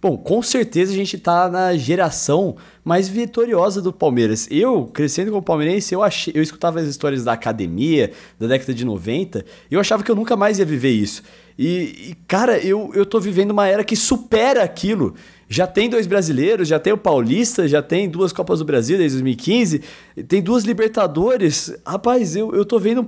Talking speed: 190 wpm